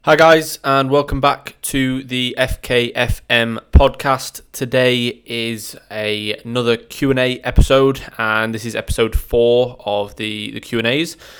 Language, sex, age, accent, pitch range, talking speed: English, male, 20-39, British, 105-125 Hz, 125 wpm